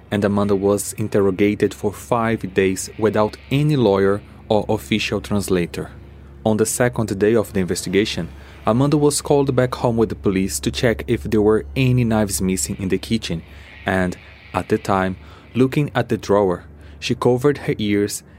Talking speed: 165 wpm